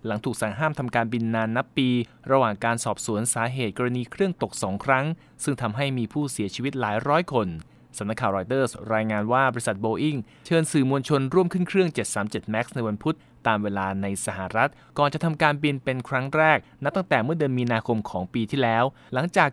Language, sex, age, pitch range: Thai, male, 20-39, 110-145 Hz